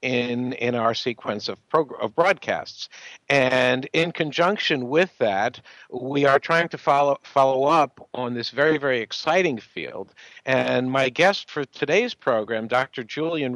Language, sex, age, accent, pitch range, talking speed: English, male, 60-79, American, 120-140 Hz, 150 wpm